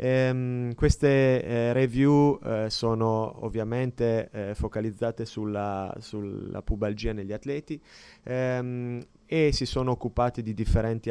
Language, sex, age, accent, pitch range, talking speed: Italian, male, 30-49, native, 105-125 Hz, 105 wpm